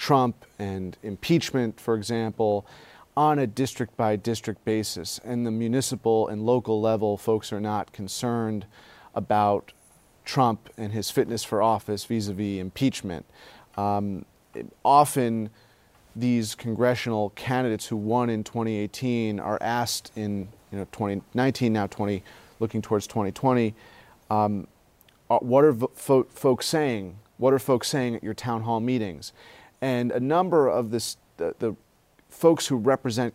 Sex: male